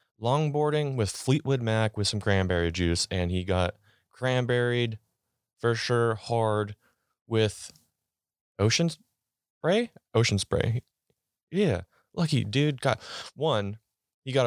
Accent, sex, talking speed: American, male, 110 wpm